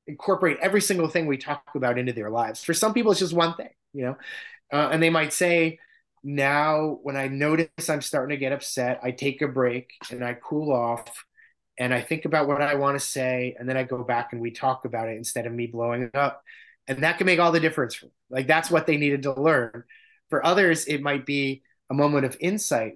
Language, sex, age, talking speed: English, male, 30-49, 235 wpm